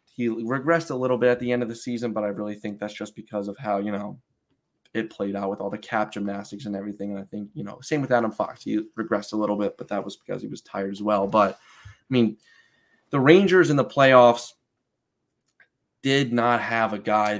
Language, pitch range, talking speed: English, 105-130 Hz, 235 wpm